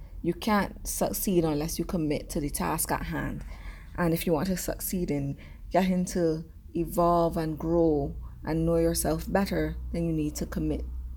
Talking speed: 170 wpm